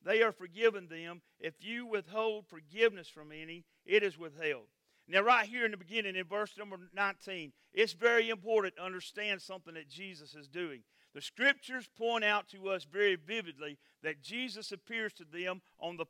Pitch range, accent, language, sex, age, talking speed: 180-230 Hz, American, English, male, 50-69, 180 wpm